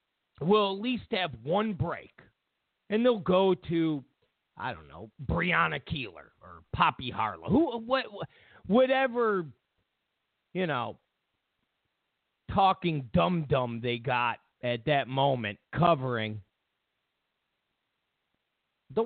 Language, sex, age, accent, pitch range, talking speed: English, male, 50-69, American, 120-195 Hz, 105 wpm